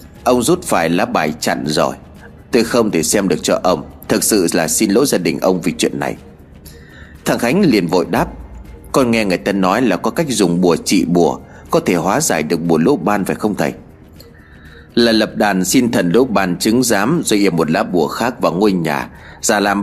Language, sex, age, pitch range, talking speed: Vietnamese, male, 30-49, 85-115 Hz, 220 wpm